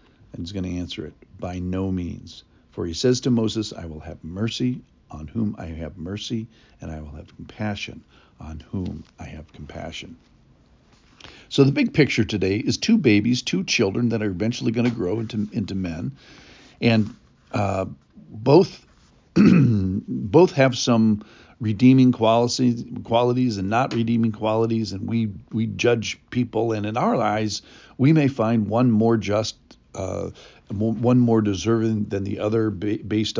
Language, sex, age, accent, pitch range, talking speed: English, male, 50-69, American, 100-120 Hz, 160 wpm